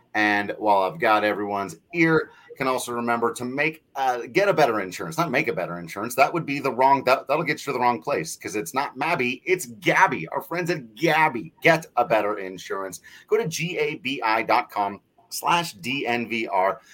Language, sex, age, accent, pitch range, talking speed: English, male, 30-49, American, 120-155 Hz, 190 wpm